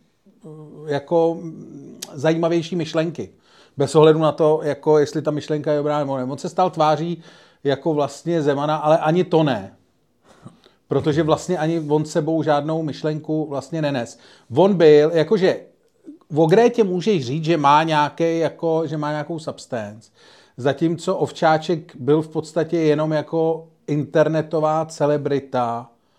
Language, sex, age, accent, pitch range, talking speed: Czech, male, 40-59, native, 140-160 Hz, 135 wpm